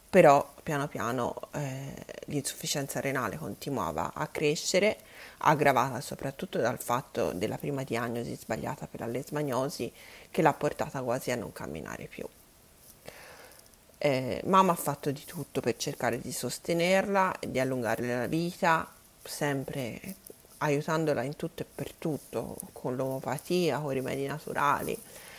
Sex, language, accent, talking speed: female, Italian, native, 130 wpm